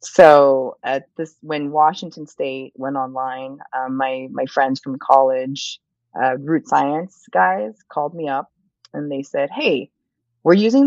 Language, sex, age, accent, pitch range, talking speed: English, female, 30-49, American, 130-155 Hz, 150 wpm